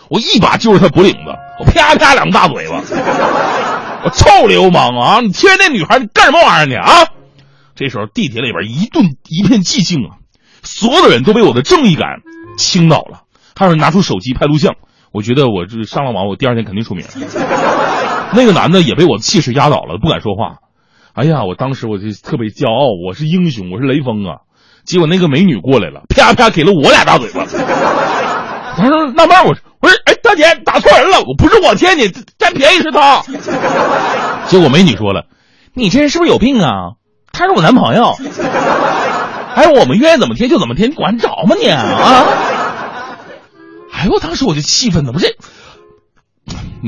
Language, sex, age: Chinese, male, 30-49